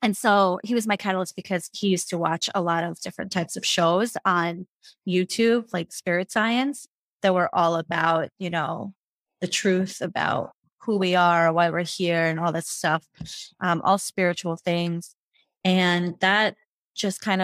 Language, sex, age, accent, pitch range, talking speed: English, female, 30-49, American, 175-210 Hz, 170 wpm